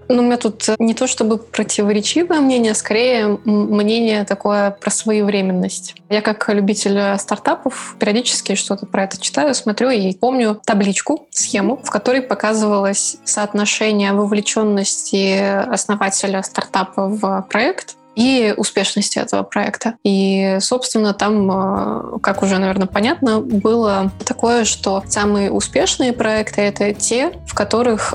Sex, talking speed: female, 125 wpm